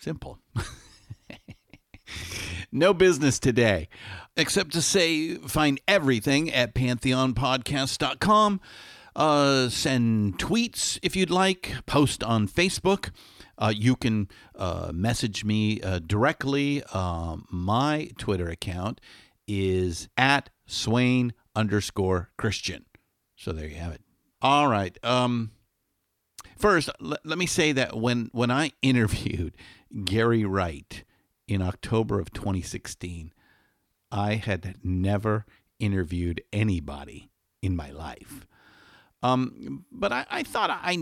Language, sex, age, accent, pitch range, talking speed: English, male, 50-69, American, 95-130 Hz, 110 wpm